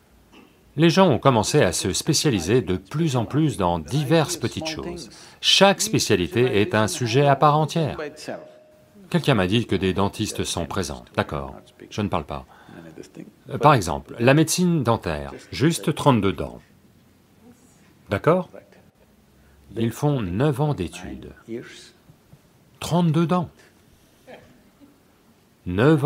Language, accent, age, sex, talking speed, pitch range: English, French, 40-59, male, 120 wpm, 100-160 Hz